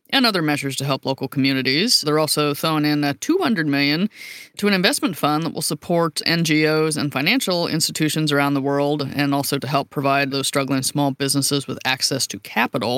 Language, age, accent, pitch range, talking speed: English, 30-49, American, 135-155 Hz, 185 wpm